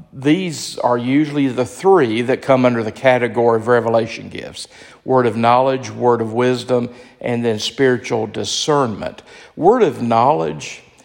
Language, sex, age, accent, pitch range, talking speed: English, male, 50-69, American, 120-135 Hz, 140 wpm